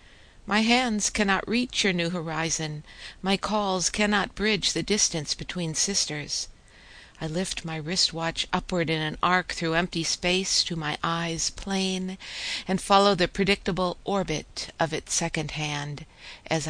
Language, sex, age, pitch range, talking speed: English, female, 60-79, 155-195 Hz, 145 wpm